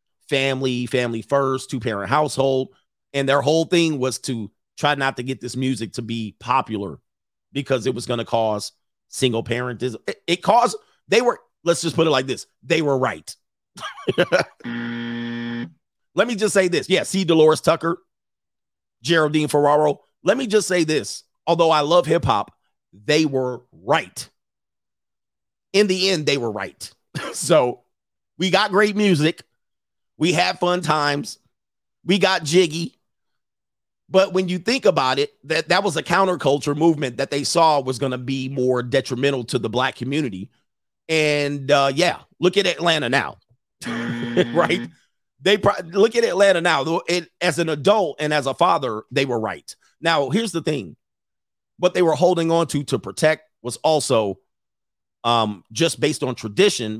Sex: male